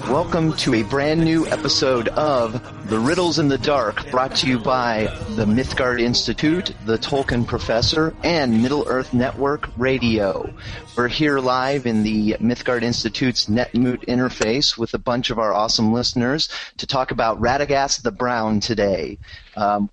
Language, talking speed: English, 155 wpm